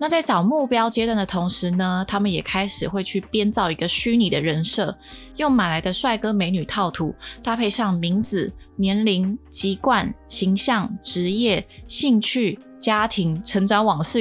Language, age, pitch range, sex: Chinese, 20-39, 185-230 Hz, female